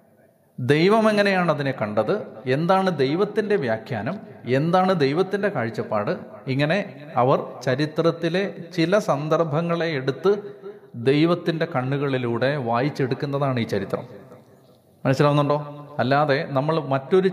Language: Malayalam